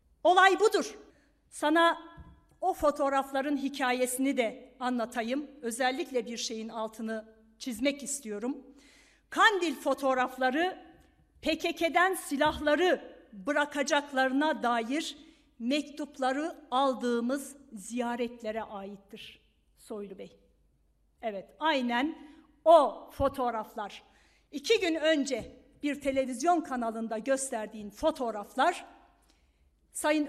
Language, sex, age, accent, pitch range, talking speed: Turkish, female, 50-69, native, 240-310 Hz, 75 wpm